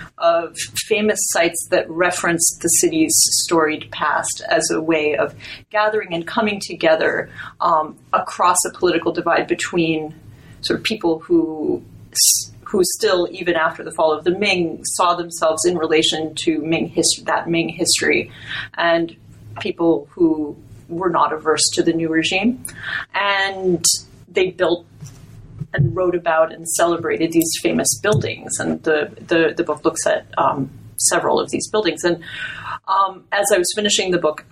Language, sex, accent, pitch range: English, female, American, 155-180 Hz